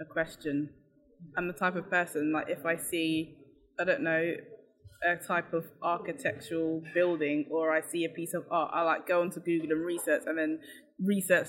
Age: 10-29